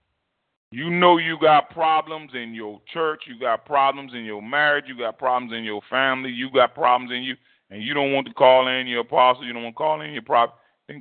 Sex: male